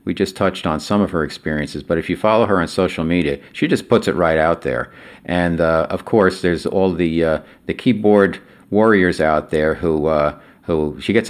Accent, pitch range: American, 80-95 Hz